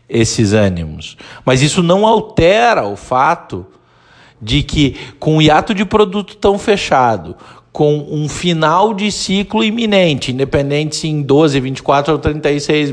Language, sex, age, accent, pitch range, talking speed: Portuguese, male, 50-69, Brazilian, 130-180 Hz, 140 wpm